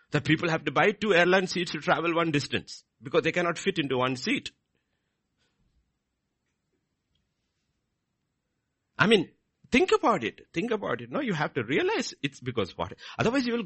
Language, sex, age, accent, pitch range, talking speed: English, male, 50-69, Indian, 125-195 Hz, 165 wpm